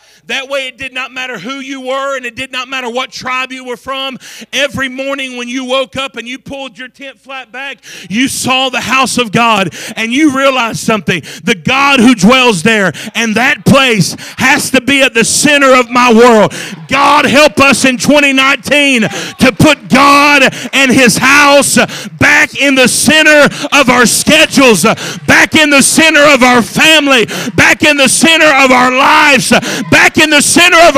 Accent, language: American, English